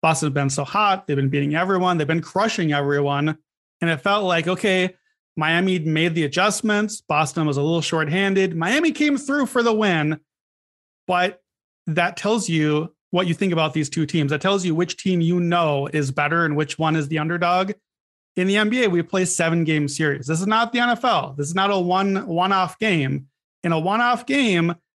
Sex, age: male, 30-49